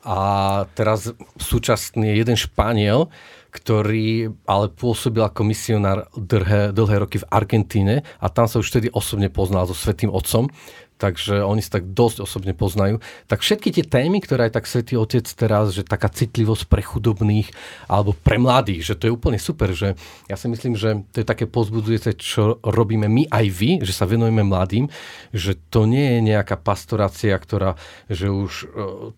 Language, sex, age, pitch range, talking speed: Slovak, male, 40-59, 100-115 Hz, 175 wpm